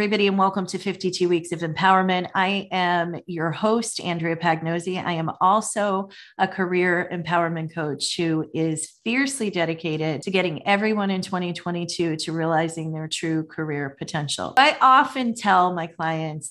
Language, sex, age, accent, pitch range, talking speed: English, female, 30-49, American, 165-215 Hz, 150 wpm